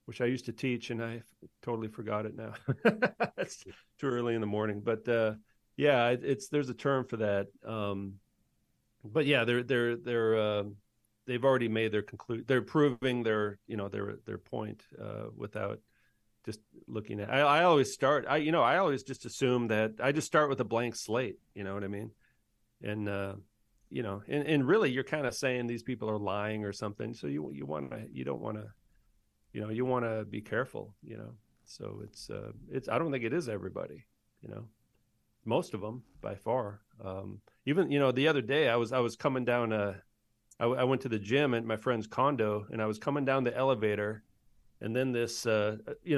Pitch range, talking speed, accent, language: 110-125 Hz, 210 wpm, American, English